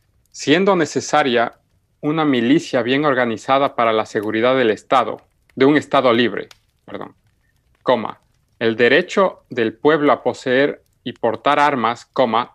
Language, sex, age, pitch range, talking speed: Spanish, male, 40-59, 110-135 Hz, 130 wpm